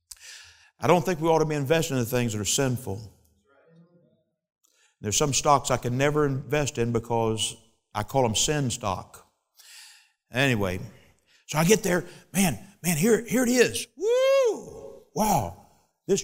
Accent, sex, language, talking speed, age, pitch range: American, male, English, 150 wpm, 50-69, 120-185 Hz